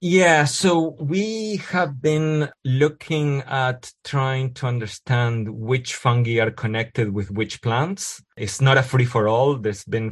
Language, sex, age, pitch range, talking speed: English, male, 20-39, 105-130 Hz, 150 wpm